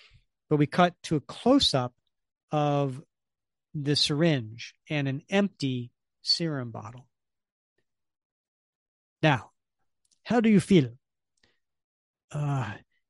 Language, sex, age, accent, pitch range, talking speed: English, male, 40-59, American, 125-185 Hz, 90 wpm